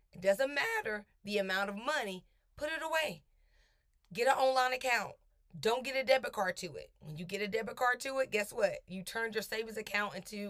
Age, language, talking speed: 30-49, English, 205 wpm